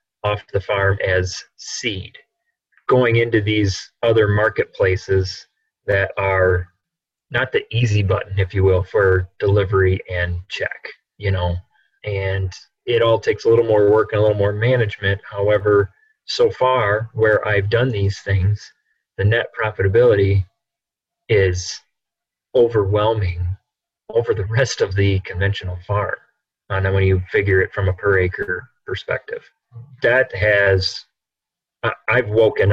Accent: American